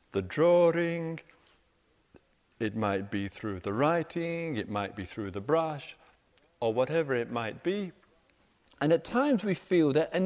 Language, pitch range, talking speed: English, 145-210 Hz, 150 wpm